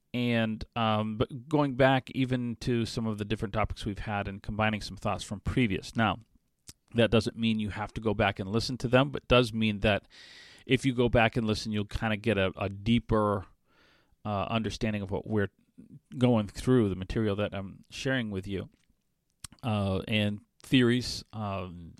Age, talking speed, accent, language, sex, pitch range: 40-59, 185 wpm, American, English, male, 100-120 Hz